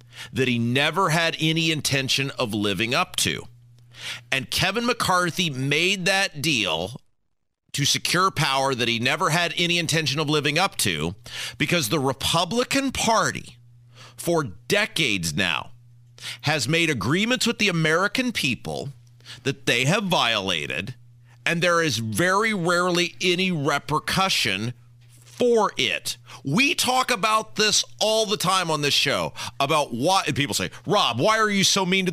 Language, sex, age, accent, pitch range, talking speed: English, male, 40-59, American, 125-195 Hz, 145 wpm